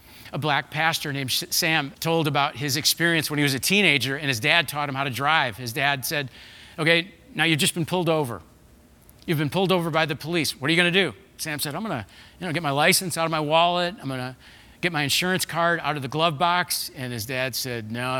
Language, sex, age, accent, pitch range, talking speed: English, male, 40-59, American, 120-160 Hz, 250 wpm